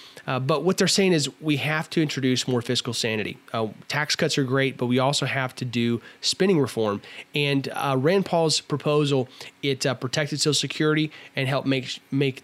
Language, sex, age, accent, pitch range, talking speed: English, male, 30-49, American, 125-150 Hz, 195 wpm